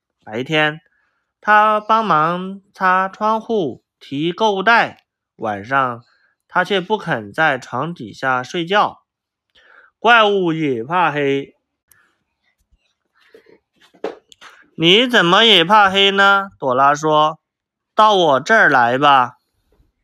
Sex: male